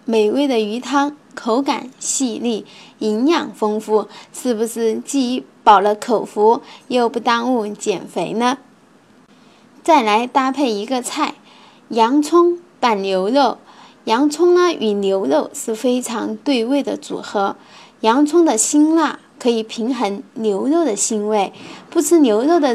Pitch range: 220-290 Hz